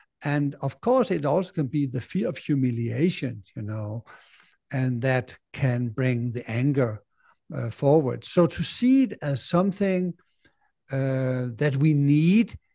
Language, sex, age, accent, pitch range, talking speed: English, male, 60-79, German, 125-165 Hz, 145 wpm